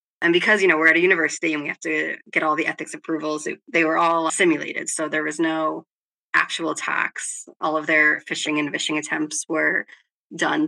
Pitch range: 155-195 Hz